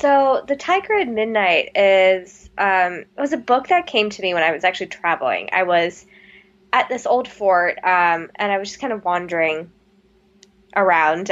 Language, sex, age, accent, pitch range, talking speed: English, female, 10-29, American, 180-225 Hz, 185 wpm